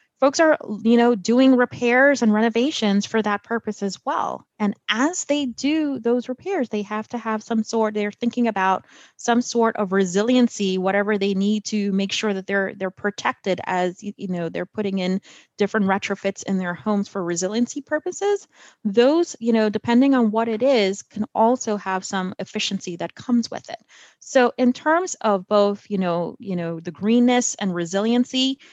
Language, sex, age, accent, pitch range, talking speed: English, female, 30-49, American, 185-240 Hz, 180 wpm